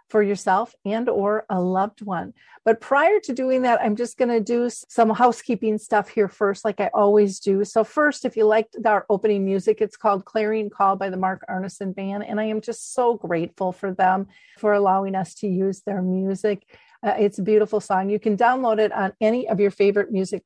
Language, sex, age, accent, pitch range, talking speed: English, female, 40-59, American, 195-230 Hz, 215 wpm